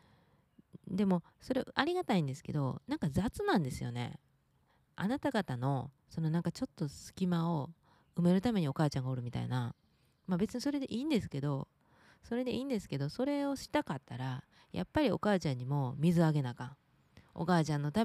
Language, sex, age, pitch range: Japanese, female, 20-39, 140-200 Hz